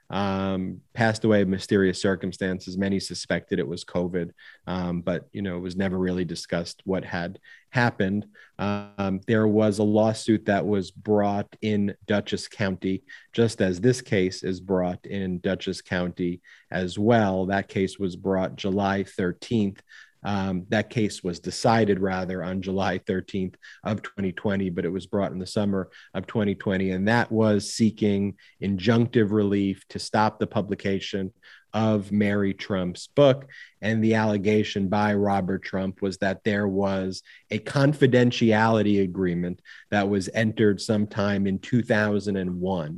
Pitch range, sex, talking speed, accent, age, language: 95-110 Hz, male, 145 wpm, American, 40-59, English